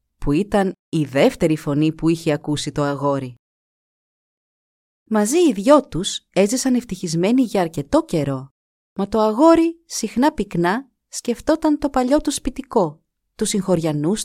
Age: 30-49